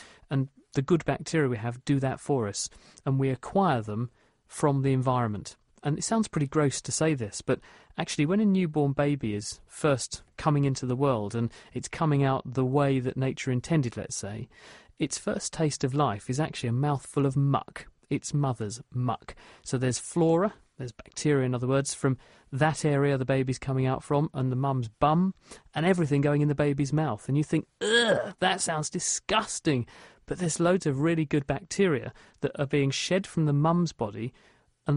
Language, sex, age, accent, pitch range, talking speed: English, male, 40-59, British, 130-160 Hz, 190 wpm